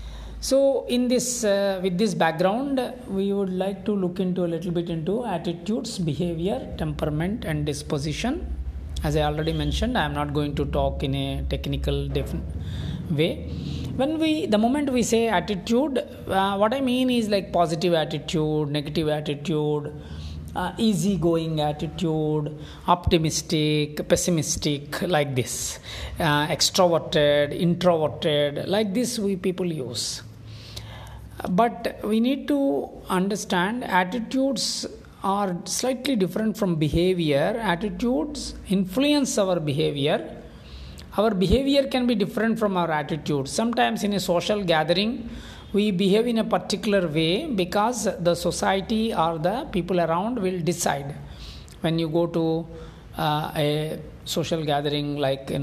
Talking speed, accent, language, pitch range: 130 wpm, Indian, English, 150-210 Hz